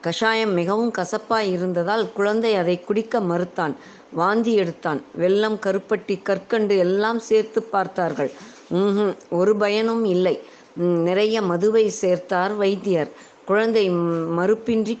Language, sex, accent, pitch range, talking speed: Tamil, female, native, 185-220 Hz, 100 wpm